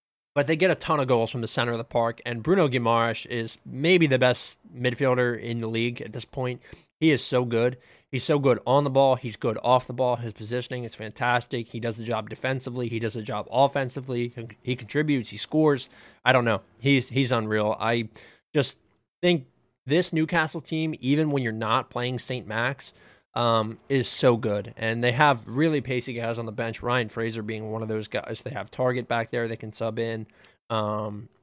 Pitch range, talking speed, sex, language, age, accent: 115-140 Hz, 210 wpm, male, English, 20-39, American